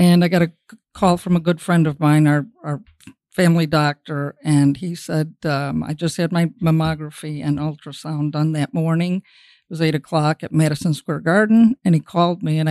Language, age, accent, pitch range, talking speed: English, 50-69, American, 155-185 Hz, 200 wpm